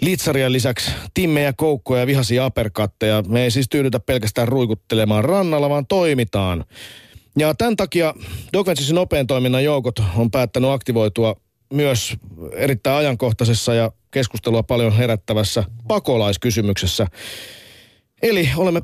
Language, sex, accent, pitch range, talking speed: Finnish, male, native, 105-140 Hz, 110 wpm